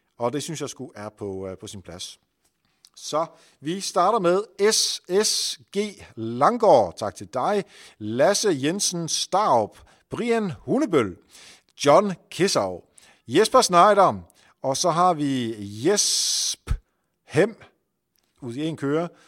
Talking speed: 115 wpm